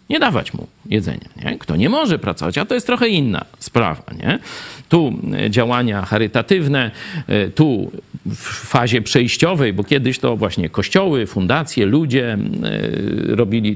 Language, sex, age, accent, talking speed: Polish, male, 50-69, native, 135 wpm